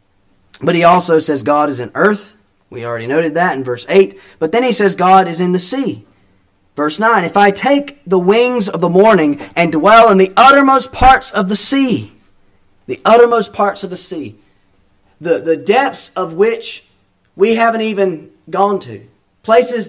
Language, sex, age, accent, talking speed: English, male, 30-49, American, 180 wpm